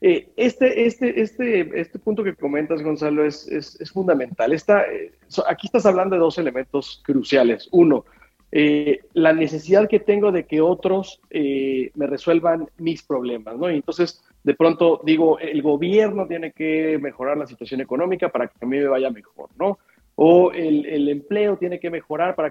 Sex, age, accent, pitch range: male, 40-59, Mexican, 140-180 Hz